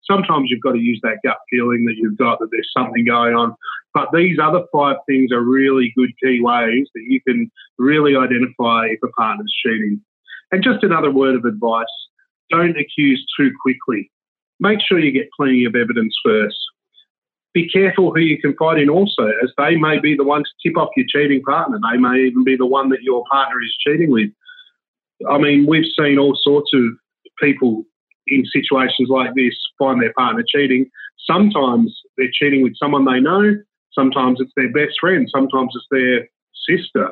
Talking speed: 190 wpm